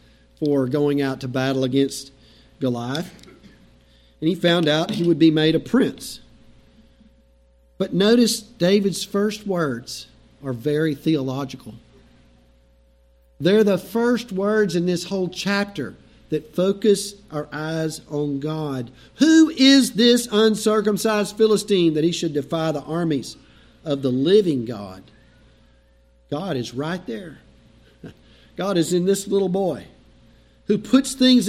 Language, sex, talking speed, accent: English, male, 130 wpm, American